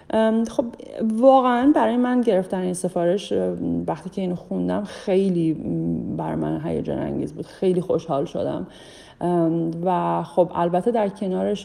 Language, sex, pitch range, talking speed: English, female, 170-205 Hz, 125 wpm